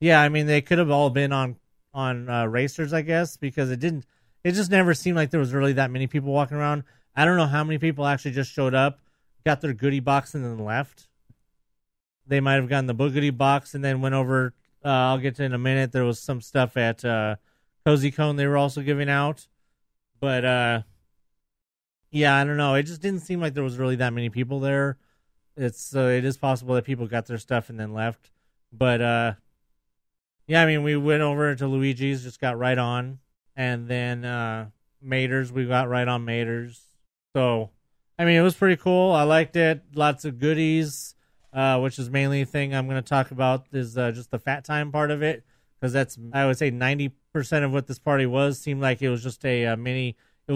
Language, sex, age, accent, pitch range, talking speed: English, male, 30-49, American, 125-150 Hz, 220 wpm